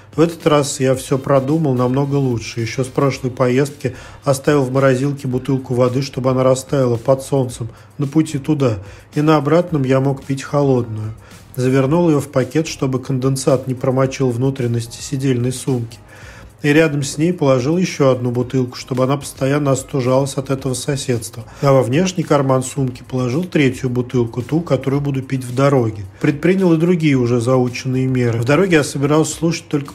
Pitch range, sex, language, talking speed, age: 125-150 Hz, male, Russian, 170 wpm, 40-59